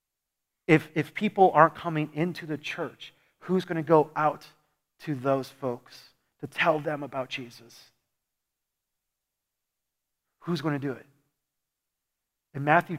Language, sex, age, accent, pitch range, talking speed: English, male, 40-59, American, 135-180 Hz, 130 wpm